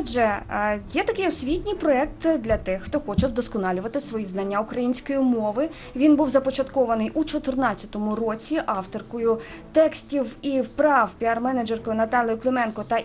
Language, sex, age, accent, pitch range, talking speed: Ukrainian, female, 20-39, native, 220-290 Hz, 130 wpm